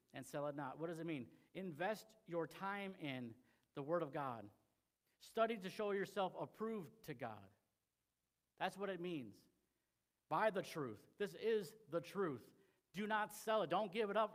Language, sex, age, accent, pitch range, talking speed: English, male, 50-69, American, 150-205 Hz, 175 wpm